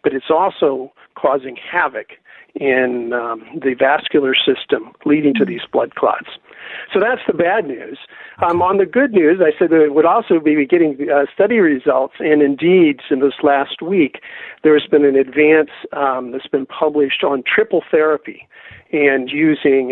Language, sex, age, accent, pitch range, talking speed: English, male, 50-69, American, 140-175 Hz, 170 wpm